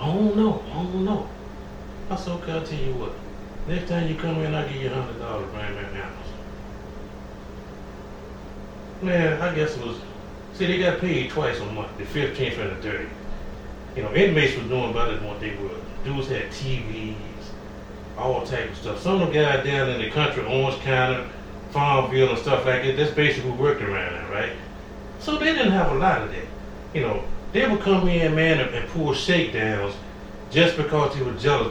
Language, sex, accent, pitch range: English, male, American, 120-180 Hz